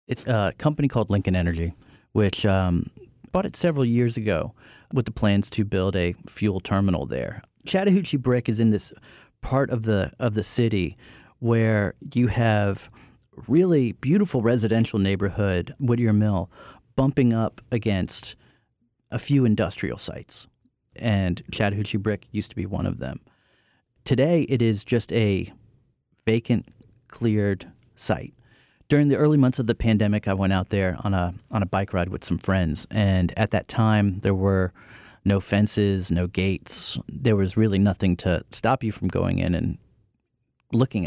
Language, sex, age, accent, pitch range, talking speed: English, male, 40-59, American, 95-120 Hz, 155 wpm